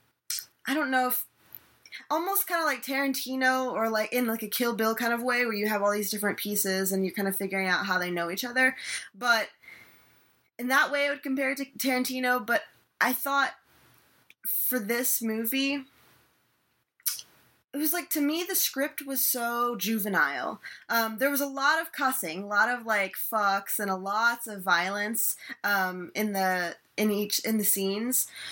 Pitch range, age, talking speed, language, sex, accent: 195-255 Hz, 20-39, 185 wpm, English, female, American